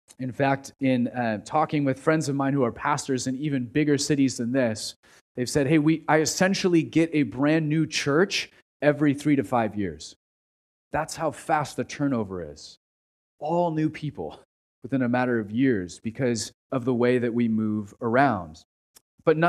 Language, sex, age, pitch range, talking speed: English, male, 30-49, 125-170 Hz, 170 wpm